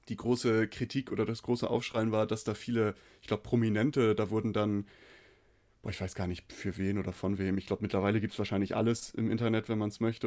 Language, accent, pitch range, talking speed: German, German, 105-120 Hz, 230 wpm